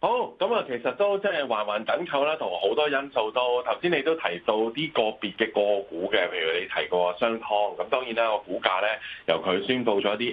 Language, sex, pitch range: Chinese, male, 105-145 Hz